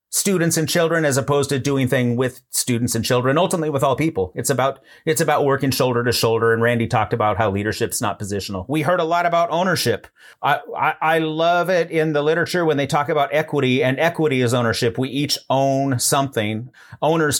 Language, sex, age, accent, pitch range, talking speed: English, male, 40-59, American, 115-145 Hz, 205 wpm